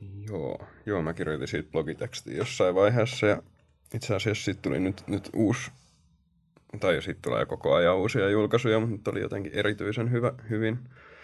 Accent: native